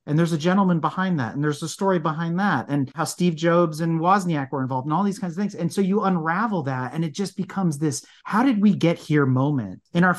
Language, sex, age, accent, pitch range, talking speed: English, male, 40-59, American, 135-175 Hz, 260 wpm